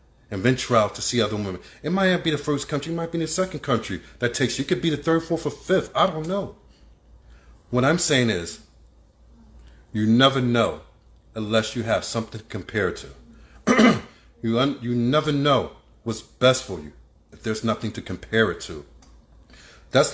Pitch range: 95-150 Hz